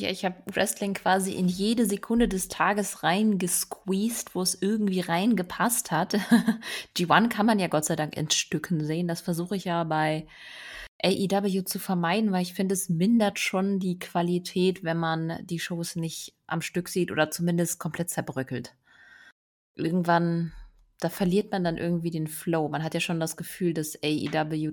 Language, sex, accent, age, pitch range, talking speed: German, female, German, 20-39, 150-195 Hz, 165 wpm